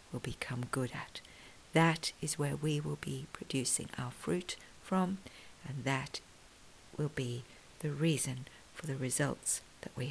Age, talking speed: 50-69, 150 wpm